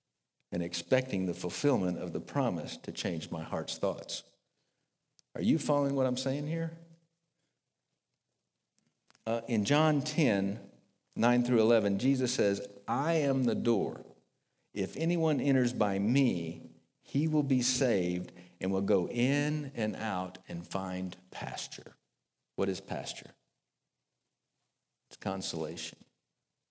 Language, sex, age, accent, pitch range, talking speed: English, male, 50-69, American, 100-150 Hz, 125 wpm